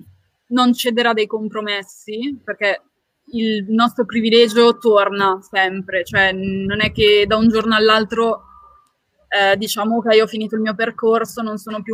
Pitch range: 195-225 Hz